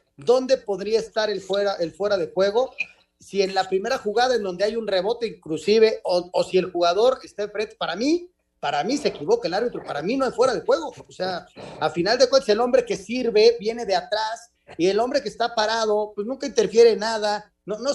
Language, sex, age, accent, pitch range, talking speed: Spanish, male, 40-59, Mexican, 175-230 Hz, 230 wpm